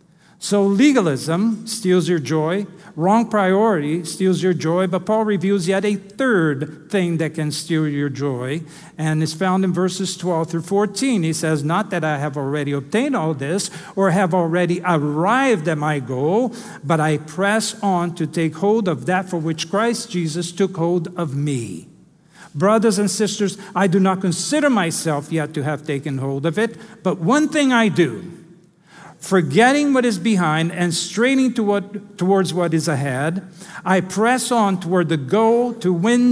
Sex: male